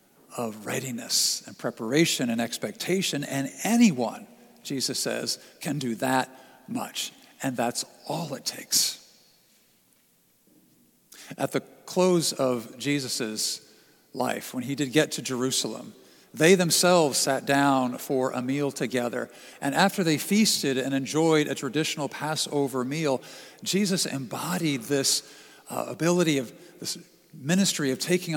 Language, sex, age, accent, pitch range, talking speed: English, male, 50-69, American, 140-180 Hz, 125 wpm